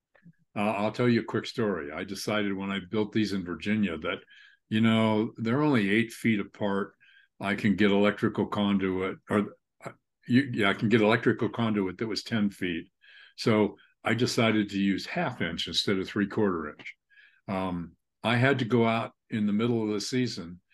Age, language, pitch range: 50-69, English, 95-115 Hz